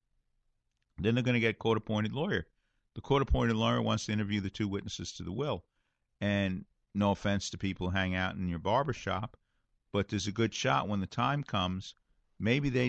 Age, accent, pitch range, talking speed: 50-69, American, 90-115 Hz, 195 wpm